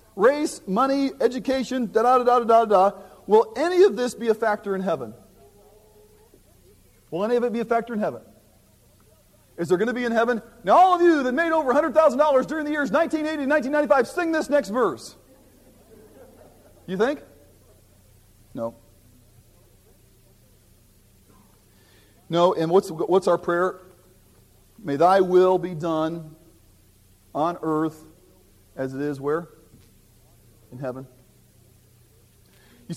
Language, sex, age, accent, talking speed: English, male, 40-59, American, 135 wpm